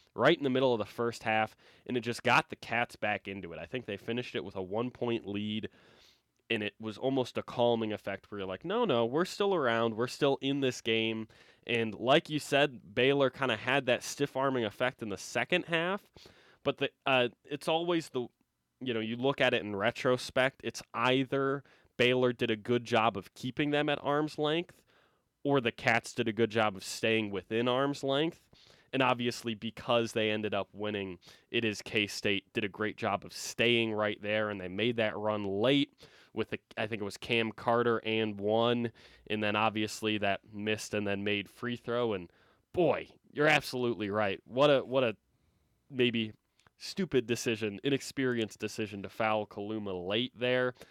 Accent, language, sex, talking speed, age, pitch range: American, English, male, 190 wpm, 20-39, 105-130 Hz